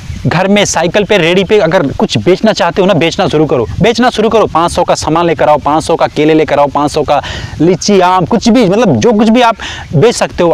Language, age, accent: Hindi, 30-49, native